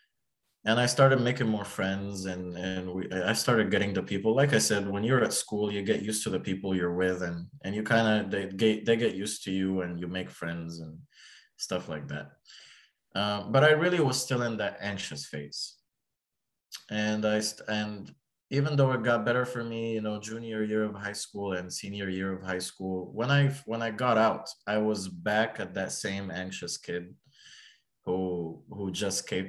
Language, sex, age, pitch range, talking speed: English, male, 20-39, 90-110 Hz, 205 wpm